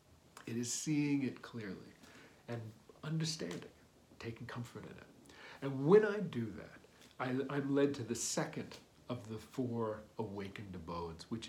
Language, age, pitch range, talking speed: English, 50-69, 110-140 Hz, 145 wpm